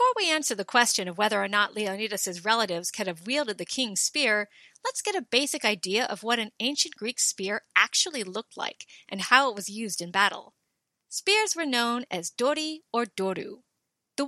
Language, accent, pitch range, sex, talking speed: English, American, 205-285 Hz, female, 195 wpm